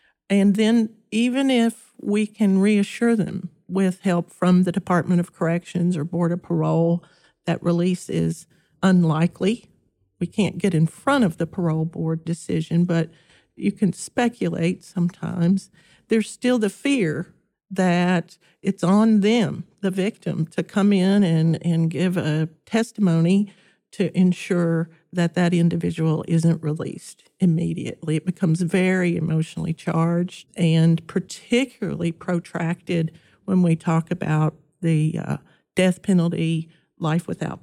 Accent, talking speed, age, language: American, 130 wpm, 50-69, English